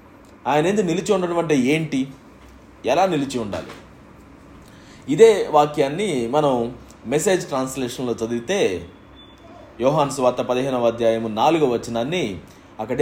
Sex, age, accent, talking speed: male, 30-49, native, 100 wpm